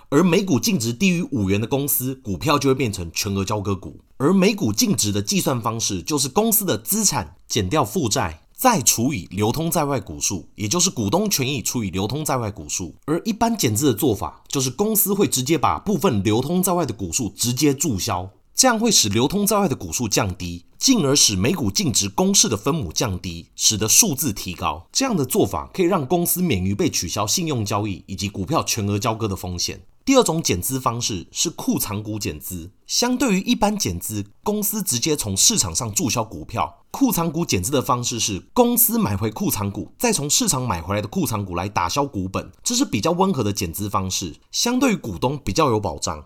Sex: male